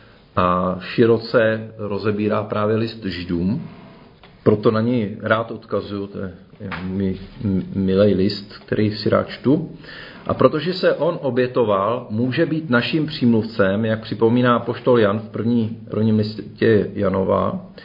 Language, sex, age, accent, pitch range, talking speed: Czech, male, 40-59, native, 105-135 Hz, 130 wpm